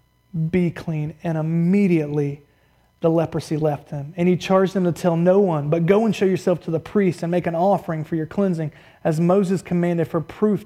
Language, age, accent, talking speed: English, 30-49, American, 205 wpm